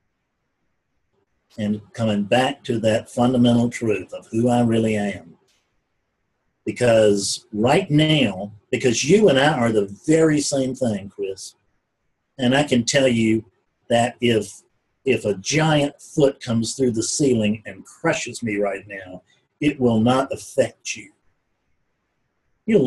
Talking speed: 135 wpm